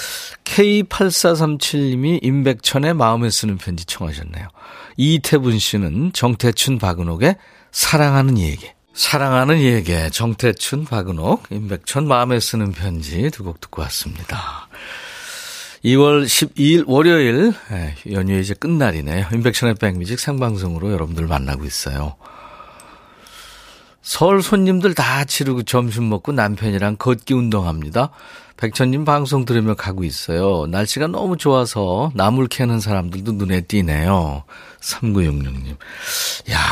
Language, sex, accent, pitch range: Korean, male, native, 95-145 Hz